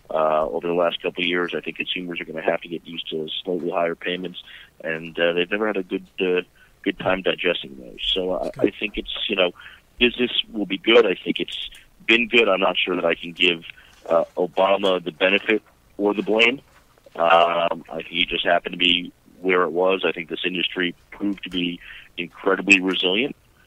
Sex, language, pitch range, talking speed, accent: male, English, 85-100 Hz, 210 wpm, American